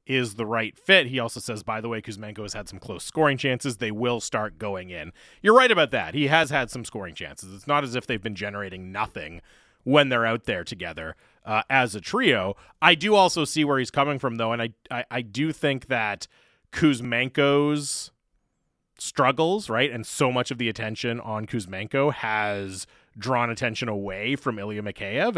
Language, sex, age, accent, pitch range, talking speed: English, male, 30-49, American, 105-135 Hz, 195 wpm